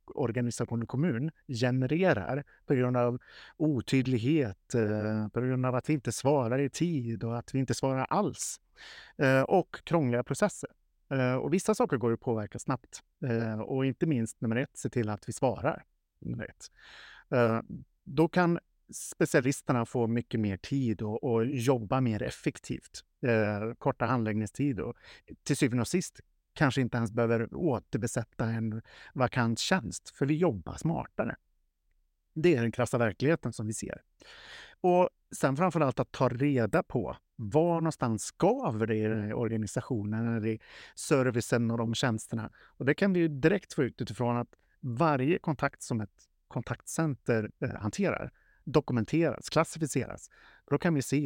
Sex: male